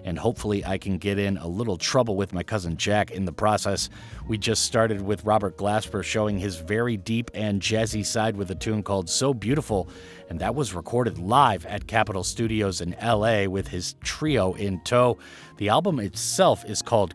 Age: 30-49